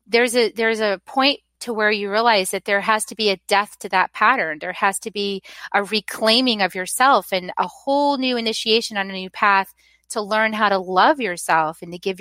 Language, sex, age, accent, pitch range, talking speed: English, female, 30-49, American, 200-245 Hz, 220 wpm